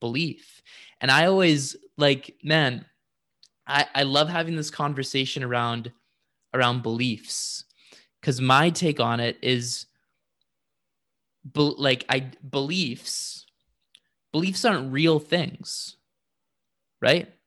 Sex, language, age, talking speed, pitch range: male, English, 20-39, 105 wpm, 120-150 Hz